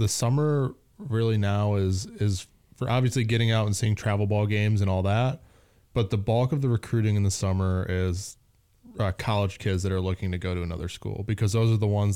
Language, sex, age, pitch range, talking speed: English, male, 20-39, 95-115 Hz, 215 wpm